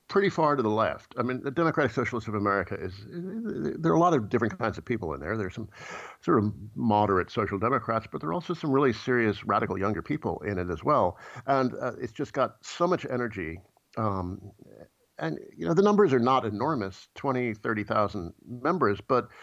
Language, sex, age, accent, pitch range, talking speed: English, male, 50-69, American, 100-125 Hz, 215 wpm